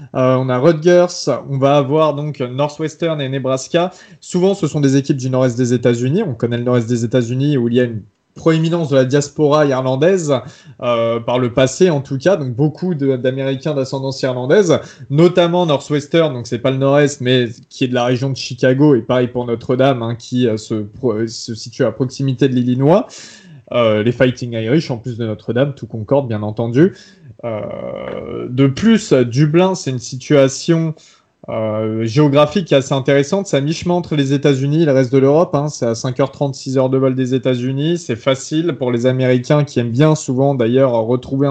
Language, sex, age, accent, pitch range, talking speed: French, male, 20-39, French, 125-150 Hz, 195 wpm